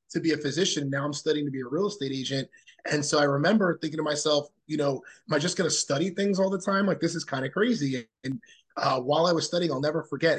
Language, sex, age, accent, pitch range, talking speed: English, male, 30-49, American, 140-160 Hz, 270 wpm